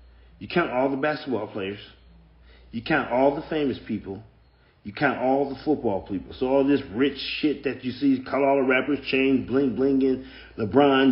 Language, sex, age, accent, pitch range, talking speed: English, male, 40-59, American, 100-140 Hz, 185 wpm